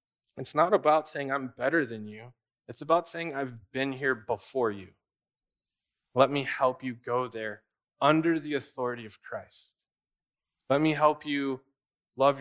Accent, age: American, 20-39